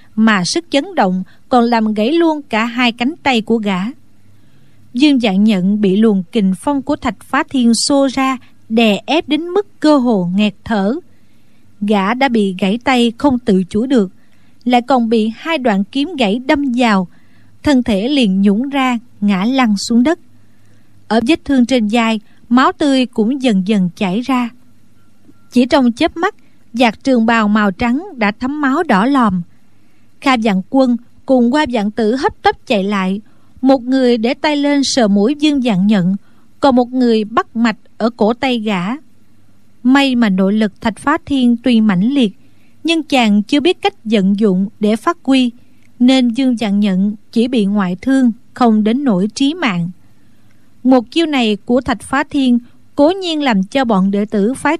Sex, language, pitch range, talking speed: female, Vietnamese, 210-270 Hz, 180 wpm